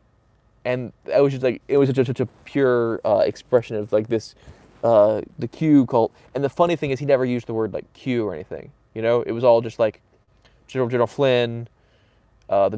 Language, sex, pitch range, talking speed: English, male, 110-125 Hz, 215 wpm